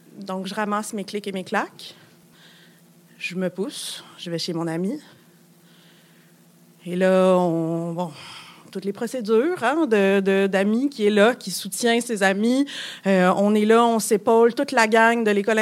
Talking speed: 175 wpm